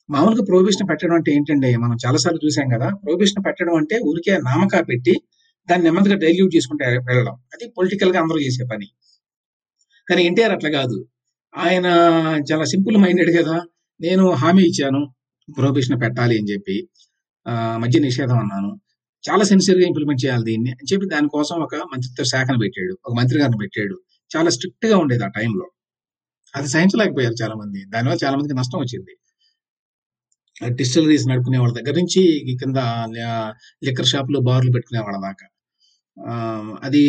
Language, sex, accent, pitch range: Telugu, male, native, 120-180 Hz